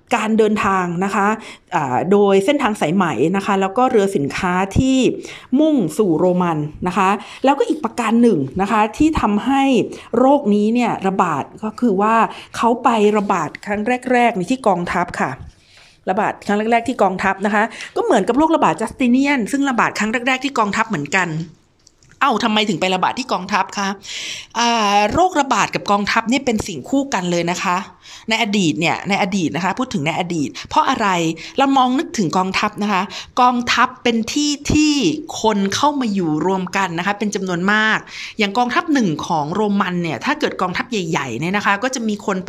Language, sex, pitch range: Thai, female, 190-250 Hz